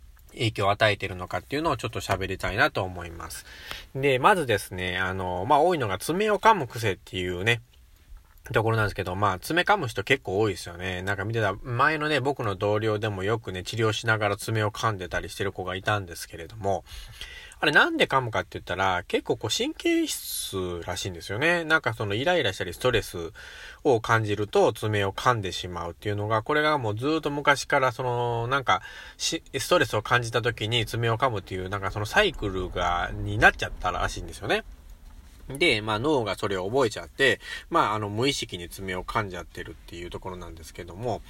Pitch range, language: 90-120 Hz, Japanese